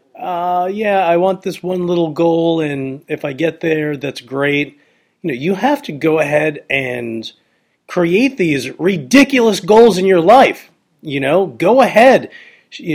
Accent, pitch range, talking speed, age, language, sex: American, 130-185 Hz, 160 wpm, 40-59, English, male